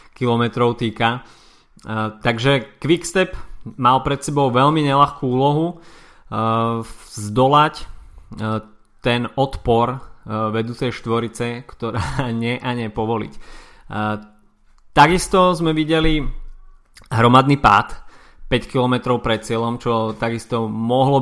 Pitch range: 110-125 Hz